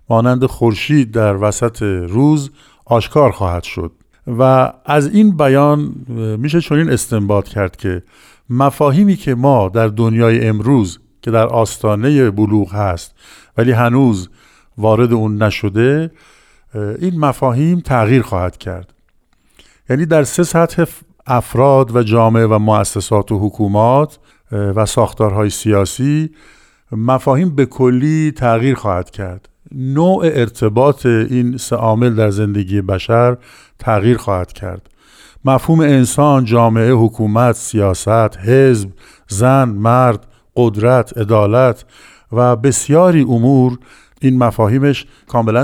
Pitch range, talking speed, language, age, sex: 105-135 Hz, 110 wpm, Persian, 50-69, male